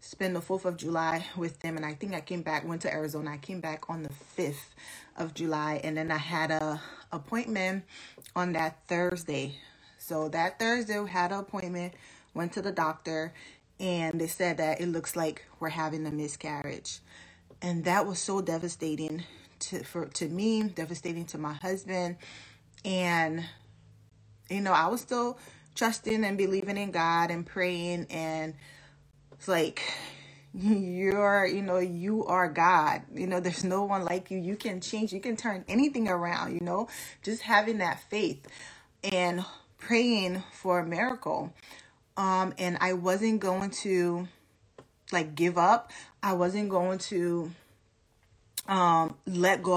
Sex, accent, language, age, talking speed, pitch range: female, American, English, 20-39, 160 wpm, 160-190 Hz